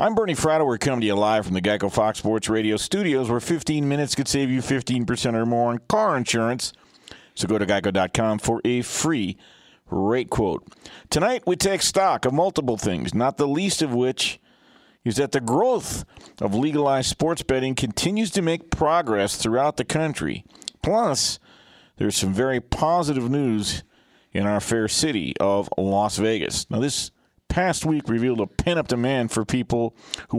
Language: English